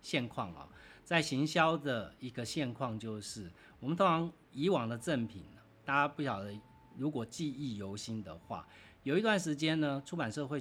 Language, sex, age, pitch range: Chinese, male, 40-59, 105-145 Hz